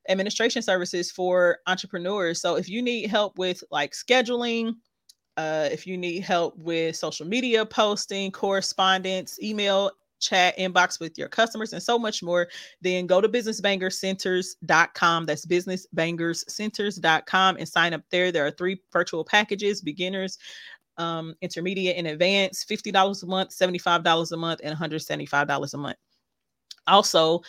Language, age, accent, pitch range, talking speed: English, 30-49, American, 165-200 Hz, 140 wpm